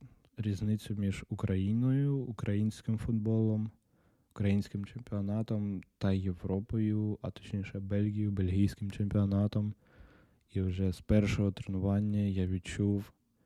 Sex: male